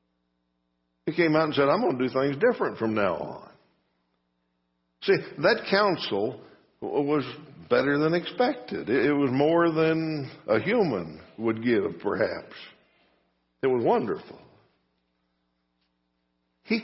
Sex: male